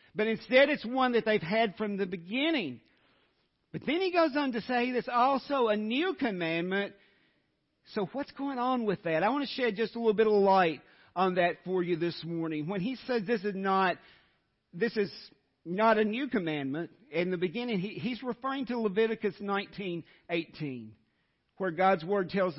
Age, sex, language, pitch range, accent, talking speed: 50-69, male, English, 180-235 Hz, American, 175 wpm